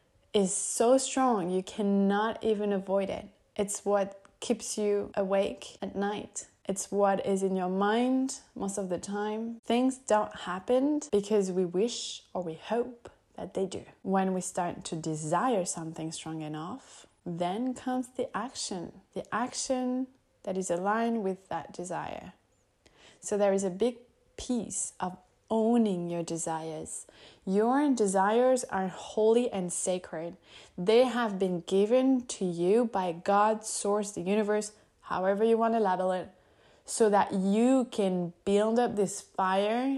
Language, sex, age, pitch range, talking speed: English, female, 20-39, 185-230 Hz, 145 wpm